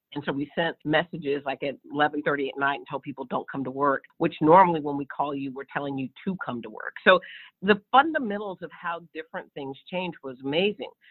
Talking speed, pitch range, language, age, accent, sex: 215 wpm, 140-175 Hz, English, 50-69, American, female